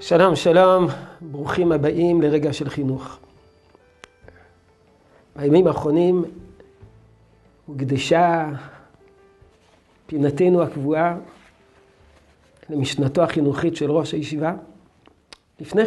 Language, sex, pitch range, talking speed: Hebrew, male, 140-175 Hz, 70 wpm